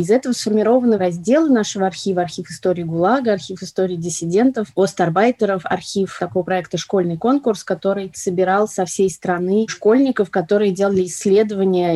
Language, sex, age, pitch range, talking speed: Russian, female, 20-39, 180-210 Hz, 135 wpm